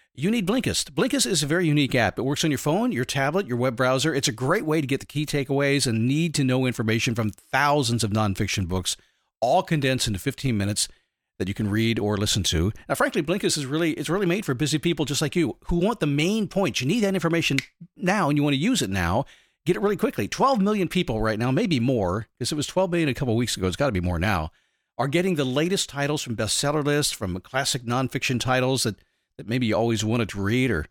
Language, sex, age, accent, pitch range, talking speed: English, male, 50-69, American, 115-165 Hz, 245 wpm